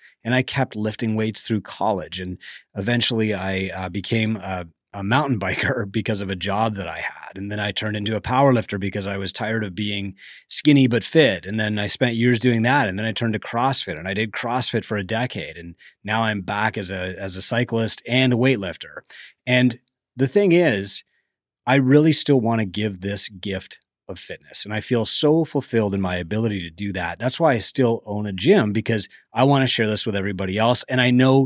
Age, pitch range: 30-49, 100-130 Hz